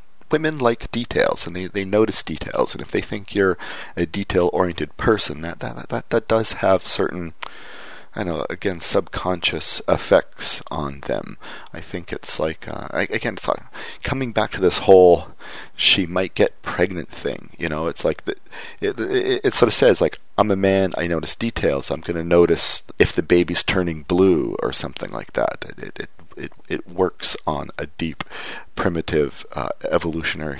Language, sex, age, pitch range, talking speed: English, male, 40-59, 75-110 Hz, 180 wpm